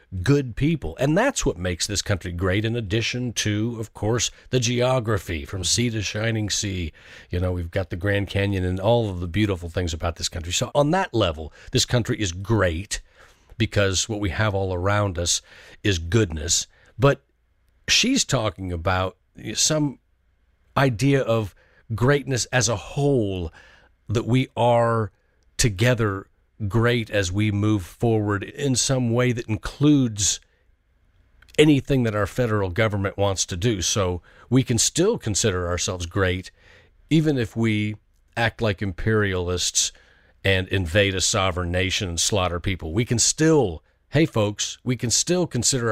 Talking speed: 155 wpm